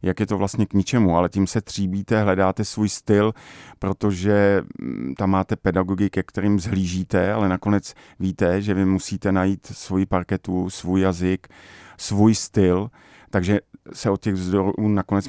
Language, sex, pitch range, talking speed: Czech, male, 90-100 Hz, 155 wpm